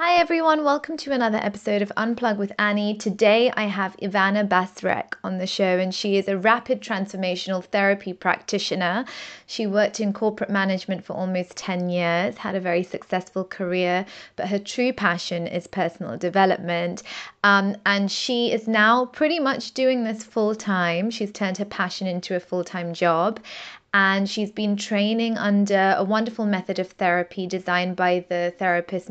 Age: 20-39